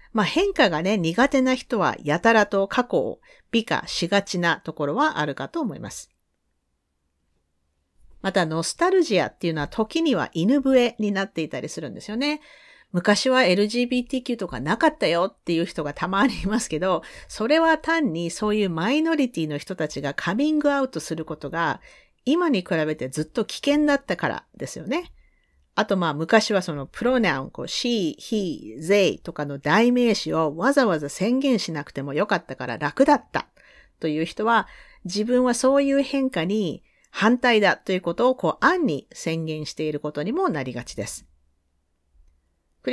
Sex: female